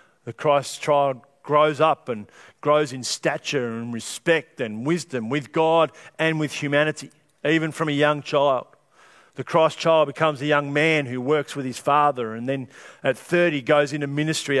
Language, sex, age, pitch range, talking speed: English, male, 50-69, 125-150 Hz, 175 wpm